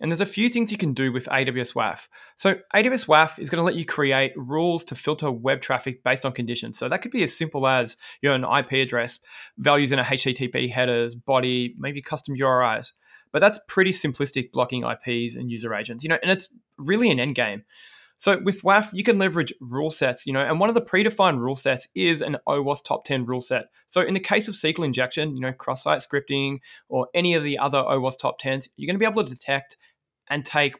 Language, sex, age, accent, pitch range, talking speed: English, male, 20-39, Australian, 130-170 Hz, 230 wpm